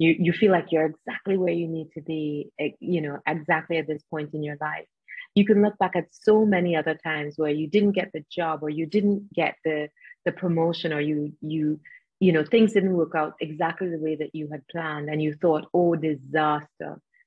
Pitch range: 155-190 Hz